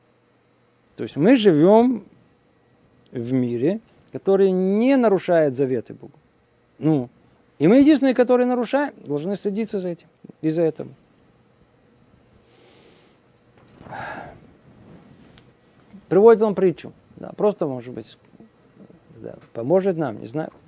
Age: 50-69